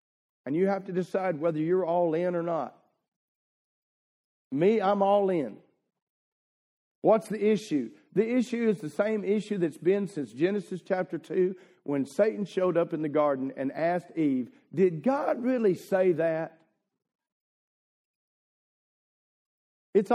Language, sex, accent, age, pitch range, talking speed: English, male, American, 50-69, 175-220 Hz, 135 wpm